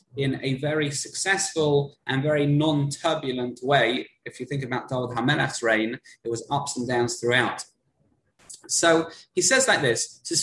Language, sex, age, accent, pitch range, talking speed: English, male, 20-39, British, 135-180 Hz, 155 wpm